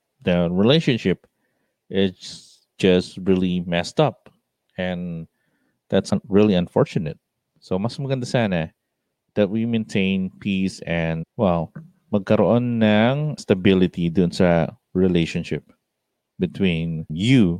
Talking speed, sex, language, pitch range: 100 wpm, male, English, 85-115 Hz